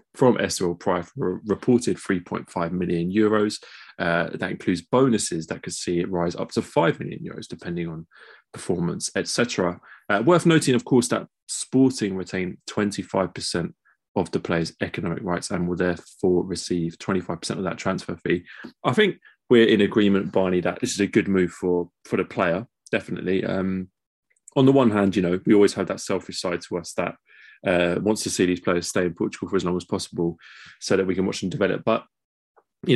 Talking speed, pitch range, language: 190 wpm, 90-105 Hz, English